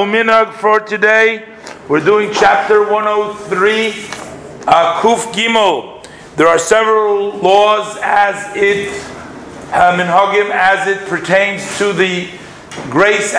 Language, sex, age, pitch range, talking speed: English, male, 50-69, 180-205 Hz, 105 wpm